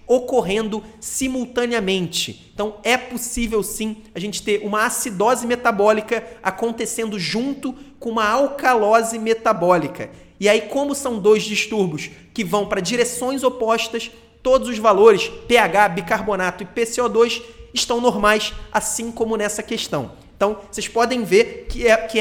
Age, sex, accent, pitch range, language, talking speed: 30-49, male, Brazilian, 210-245 Hz, Portuguese, 130 wpm